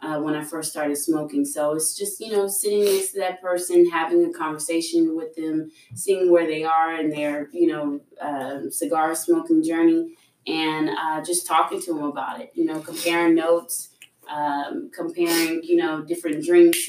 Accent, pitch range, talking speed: American, 150-180 Hz, 180 wpm